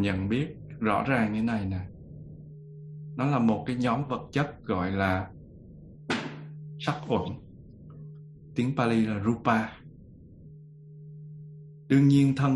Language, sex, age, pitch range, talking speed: Vietnamese, male, 20-39, 100-135 Hz, 120 wpm